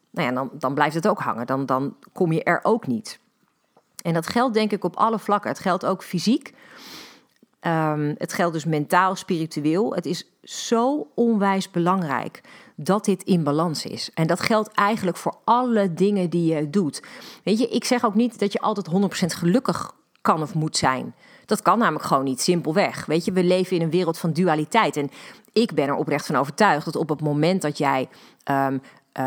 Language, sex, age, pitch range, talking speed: Dutch, female, 40-59, 155-215 Hz, 200 wpm